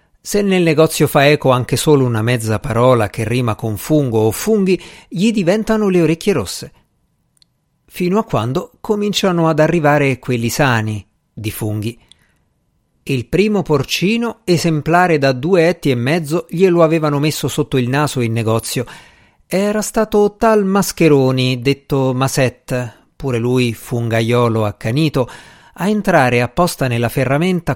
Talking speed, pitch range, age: 135 wpm, 120-175 Hz, 50-69